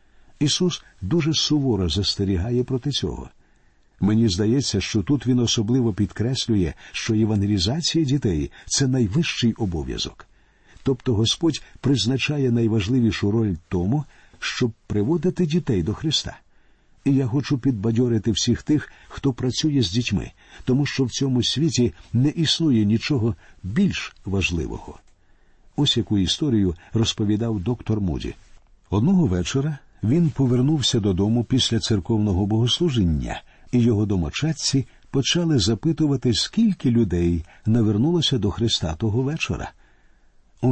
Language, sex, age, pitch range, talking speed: Ukrainian, male, 60-79, 100-135 Hz, 115 wpm